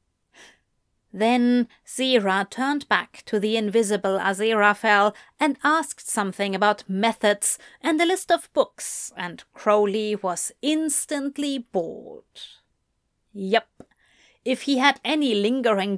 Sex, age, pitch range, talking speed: female, 30-49, 200-270 Hz, 110 wpm